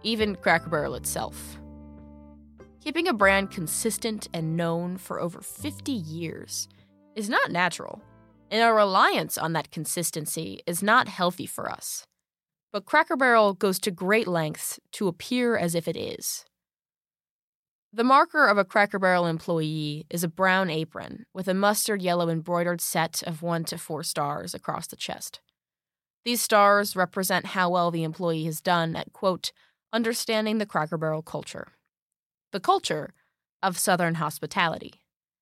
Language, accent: English, American